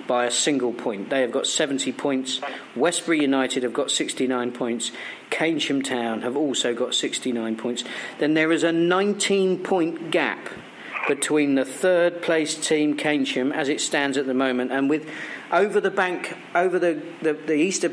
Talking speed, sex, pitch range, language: 170 wpm, male, 125-165 Hz, English